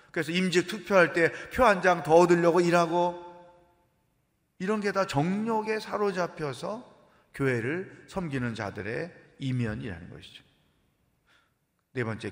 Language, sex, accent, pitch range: Korean, male, native, 125-180 Hz